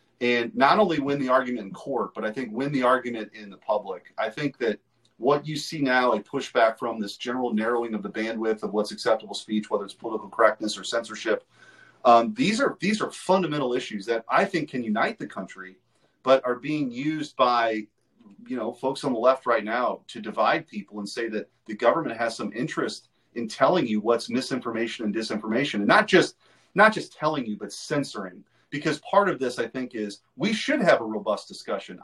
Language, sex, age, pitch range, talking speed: English, male, 30-49, 110-145 Hz, 200 wpm